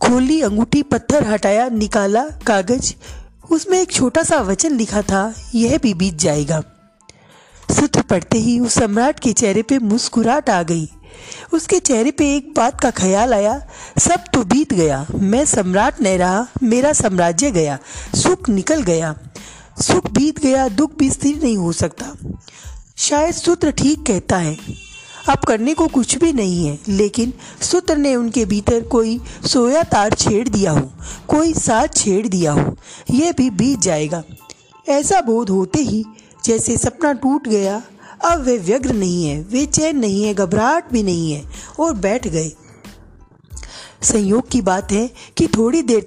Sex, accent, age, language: female, native, 30-49, Hindi